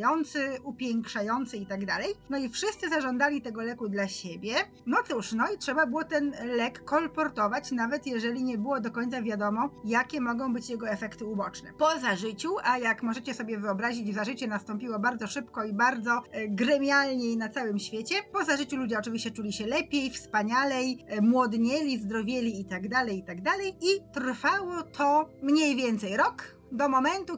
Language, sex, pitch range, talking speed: Polish, female, 230-290 Hz, 165 wpm